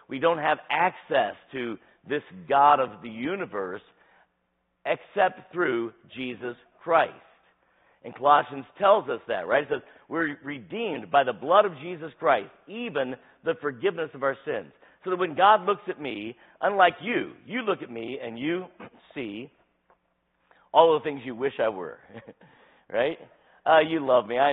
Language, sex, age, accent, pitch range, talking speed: English, male, 50-69, American, 105-145 Hz, 160 wpm